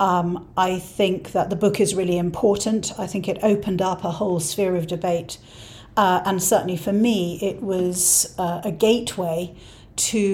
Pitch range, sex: 170-200 Hz, female